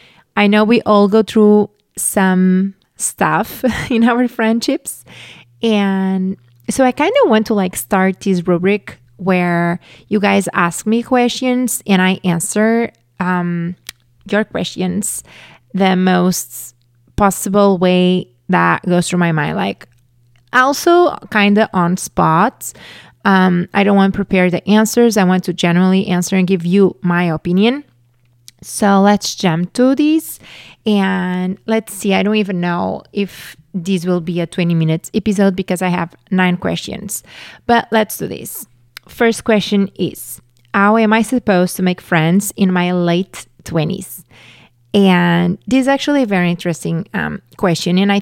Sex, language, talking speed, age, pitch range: female, English, 150 wpm, 30-49, 175-210 Hz